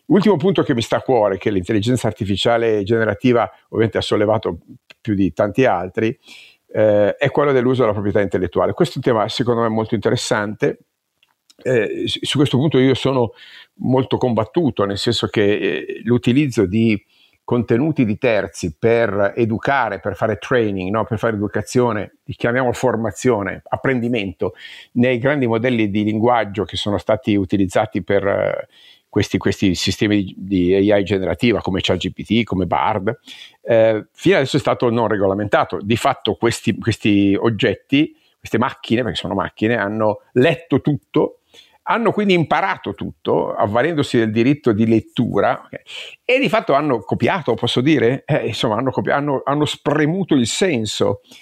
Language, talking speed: Italian, 150 wpm